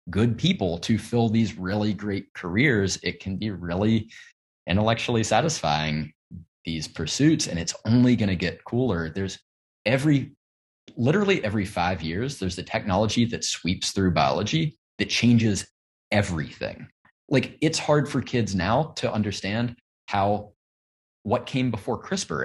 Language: English